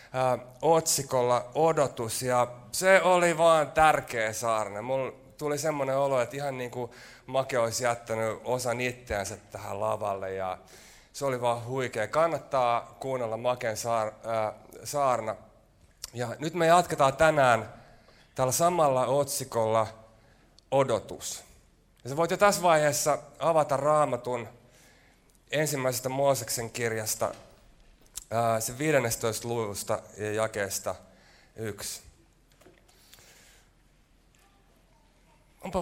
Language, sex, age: Finnish, male, 30-49